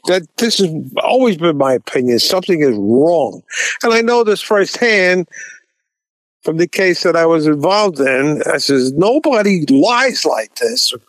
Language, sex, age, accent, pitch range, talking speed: English, male, 50-69, American, 150-220 Hz, 160 wpm